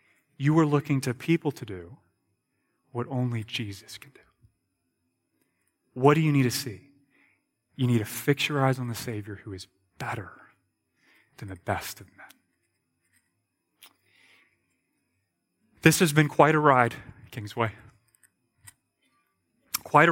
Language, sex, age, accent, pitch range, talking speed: English, male, 30-49, American, 110-150 Hz, 130 wpm